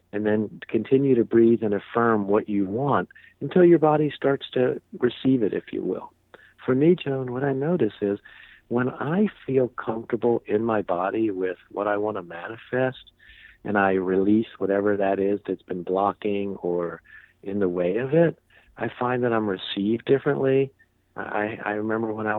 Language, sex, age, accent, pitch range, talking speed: English, male, 50-69, American, 105-135 Hz, 175 wpm